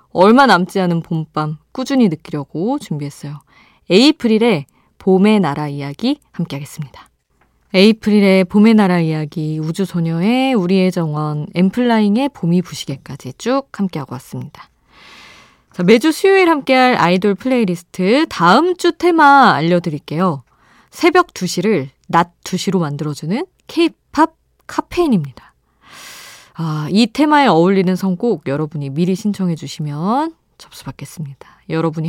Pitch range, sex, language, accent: 155-230 Hz, female, Korean, native